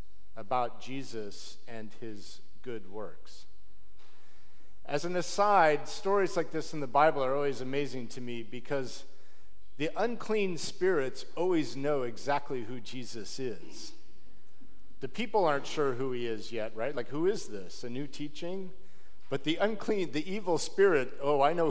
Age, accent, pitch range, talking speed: 50-69, American, 100-145 Hz, 150 wpm